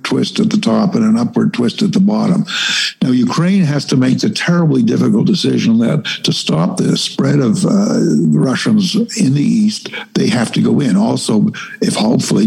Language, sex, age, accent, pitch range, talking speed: English, male, 60-79, American, 190-220 Hz, 190 wpm